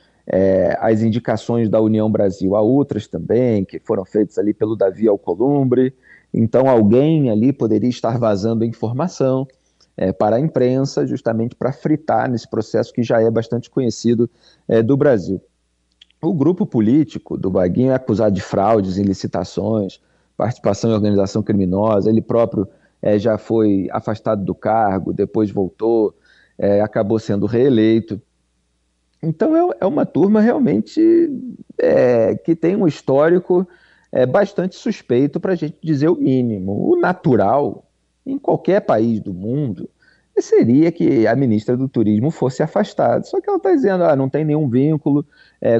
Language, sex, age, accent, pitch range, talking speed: Portuguese, male, 40-59, Brazilian, 110-150 Hz, 145 wpm